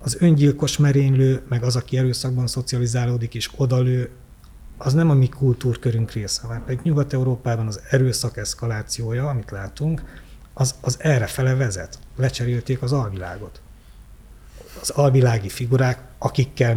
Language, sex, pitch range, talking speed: Hungarian, male, 105-130 Hz, 130 wpm